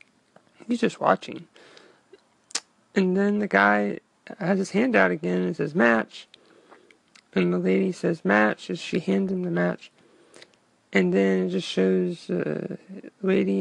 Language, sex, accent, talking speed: English, male, American, 150 wpm